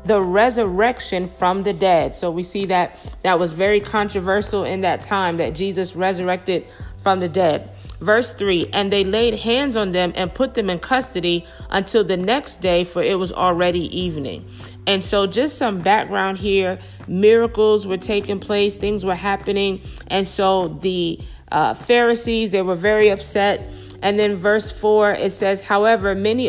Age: 40-59